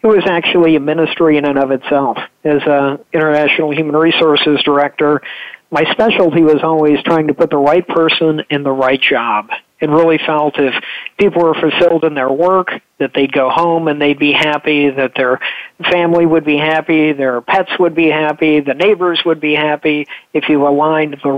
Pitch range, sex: 145-165 Hz, male